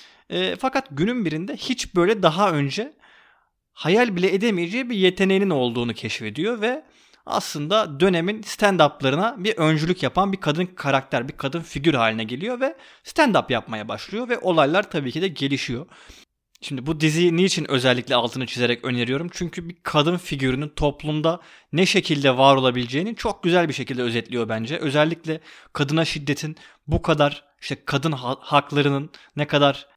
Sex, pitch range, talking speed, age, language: male, 140-185 Hz, 145 wpm, 30-49, Turkish